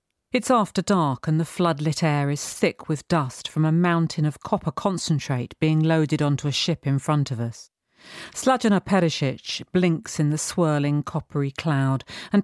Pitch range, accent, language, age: 145-180 Hz, British, Chinese, 40-59